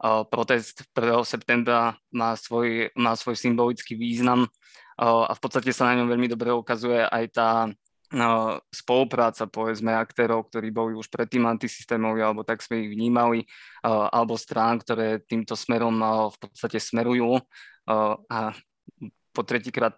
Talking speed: 130 wpm